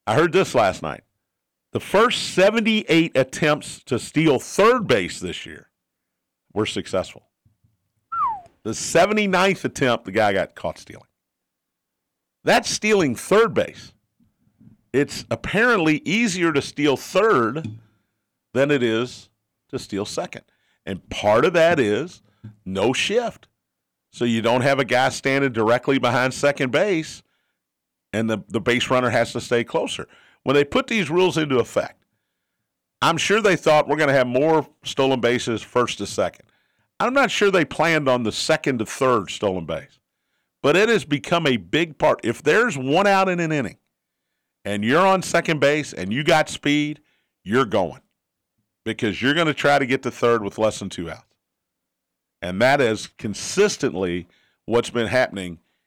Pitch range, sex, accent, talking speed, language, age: 110-160 Hz, male, American, 160 wpm, English, 50-69